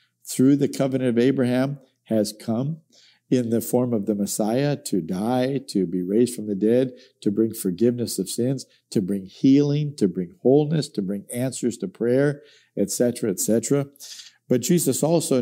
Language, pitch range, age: English, 110-135 Hz, 50-69